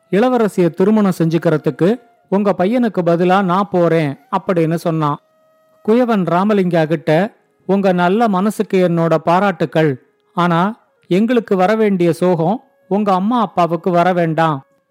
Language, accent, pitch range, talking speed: Tamil, native, 170-210 Hz, 100 wpm